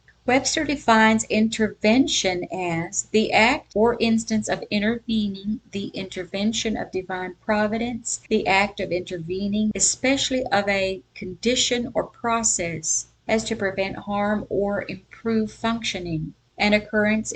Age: 50-69